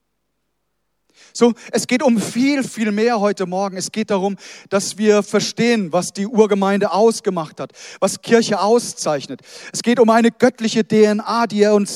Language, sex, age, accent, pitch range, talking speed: German, male, 40-59, German, 165-215 Hz, 160 wpm